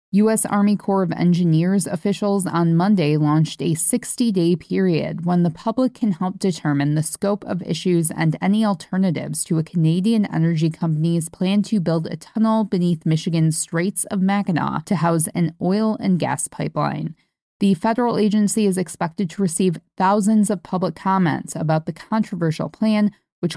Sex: female